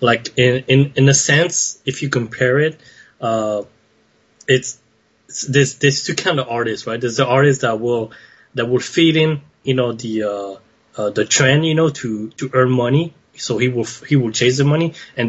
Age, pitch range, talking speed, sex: 20-39, 110-130 Hz, 200 wpm, male